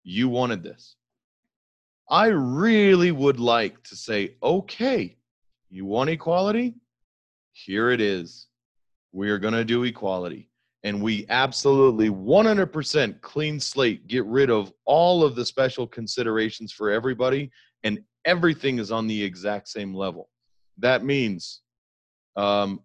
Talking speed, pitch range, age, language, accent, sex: 130 wpm, 105-130 Hz, 30-49, English, American, male